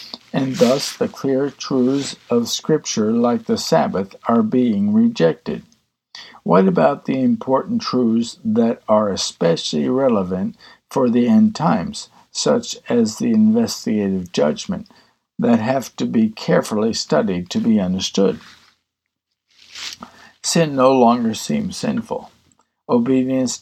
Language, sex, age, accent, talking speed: English, male, 60-79, American, 115 wpm